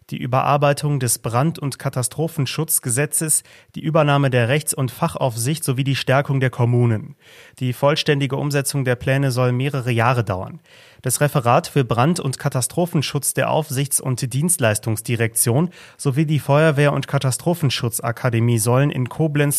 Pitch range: 125-155 Hz